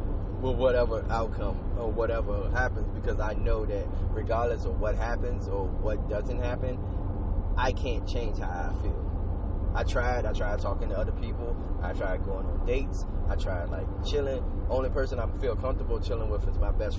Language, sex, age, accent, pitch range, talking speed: English, male, 20-39, American, 85-100 Hz, 180 wpm